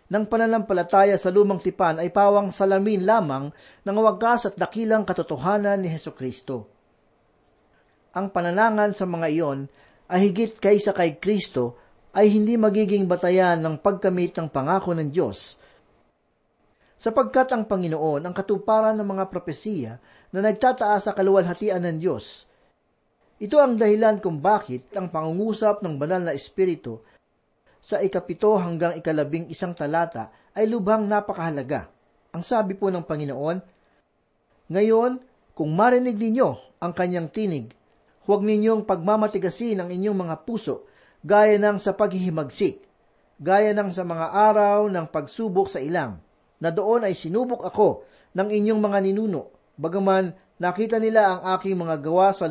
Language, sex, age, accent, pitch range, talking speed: Filipino, male, 40-59, native, 170-210 Hz, 135 wpm